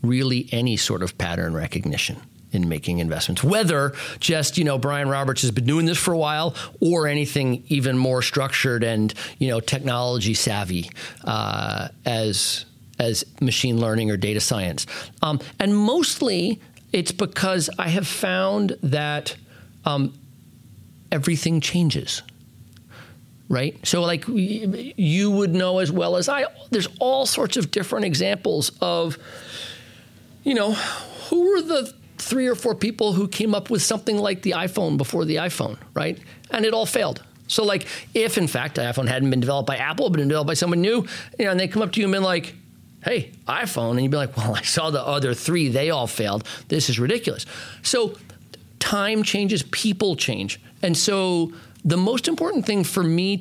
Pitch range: 125-190 Hz